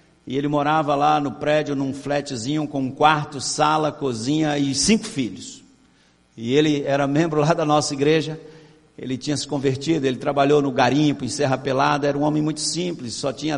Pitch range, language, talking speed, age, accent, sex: 145-165 Hz, Portuguese, 185 wpm, 60-79, Brazilian, male